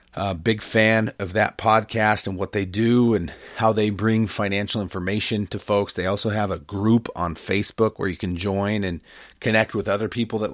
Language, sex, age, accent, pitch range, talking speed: English, male, 40-59, American, 95-110 Hz, 200 wpm